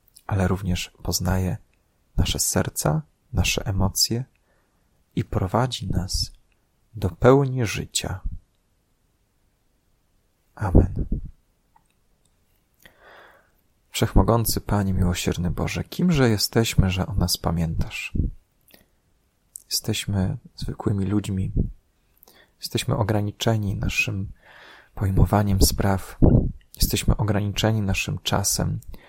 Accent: native